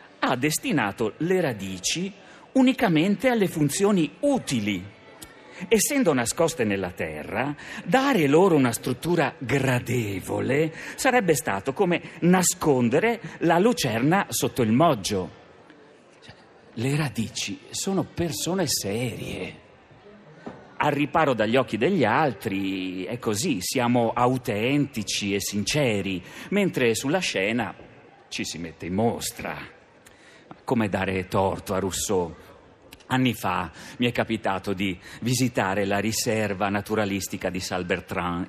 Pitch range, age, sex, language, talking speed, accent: 100-145 Hz, 40-59, male, Italian, 105 wpm, native